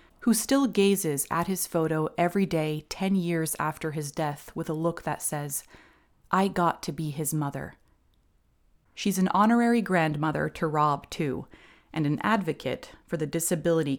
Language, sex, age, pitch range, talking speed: English, female, 30-49, 150-195 Hz, 160 wpm